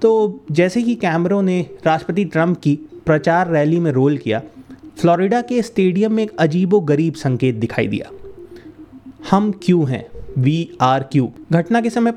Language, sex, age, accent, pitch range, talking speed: Hindi, male, 30-49, native, 155-210 Hz, 155 wpm